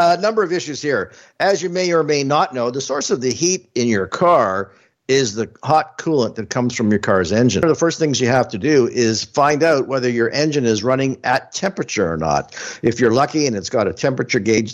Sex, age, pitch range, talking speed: male, 60-79, 115-145 Hz, 235 wpm